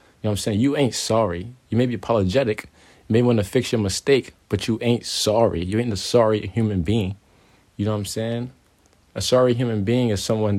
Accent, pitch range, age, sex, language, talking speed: American, 105-120 Hz, 20-39, male, English, 225 wpm